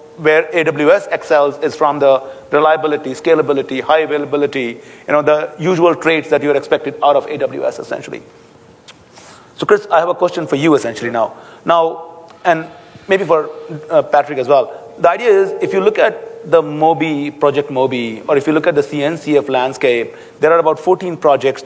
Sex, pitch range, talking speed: male, 145-170 Hz, 180 wpm